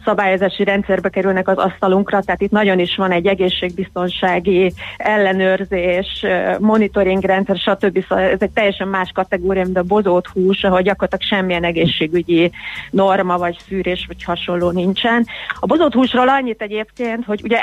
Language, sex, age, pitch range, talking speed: Hungarian, female, 30-49, 185-220 Hz, 135 wpm